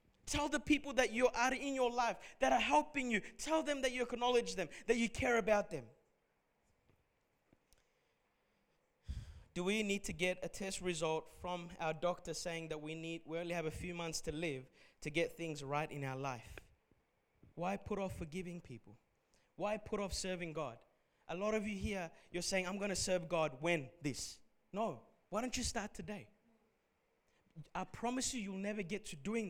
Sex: male